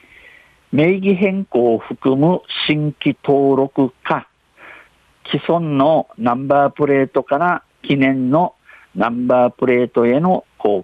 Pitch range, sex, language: 120-140 Hz, male, Japanese